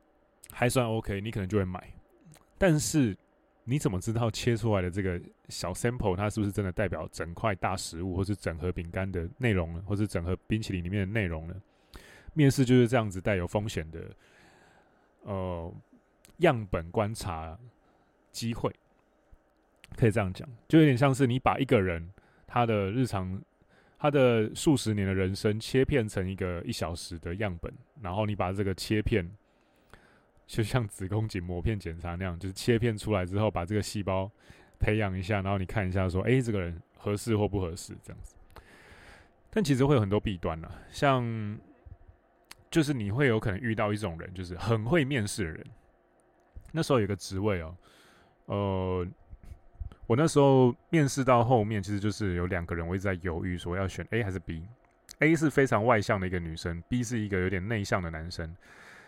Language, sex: Chinese, male